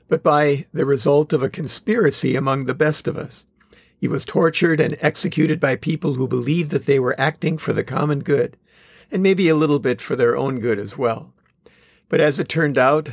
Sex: male